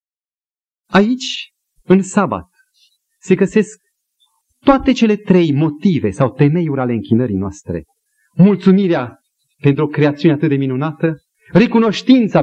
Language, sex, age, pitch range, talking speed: Romanian, male, 40-59, 120-190 Hz, 105 wpm